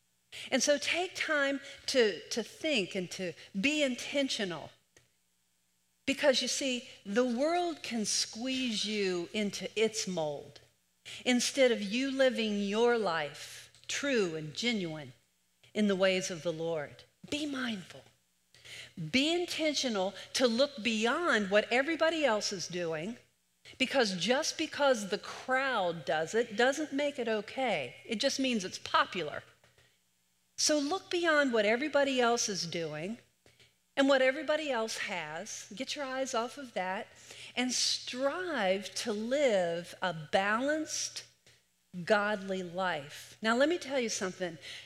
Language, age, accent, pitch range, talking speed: English, 50-69, American, 175-270 Hz, 130 wpm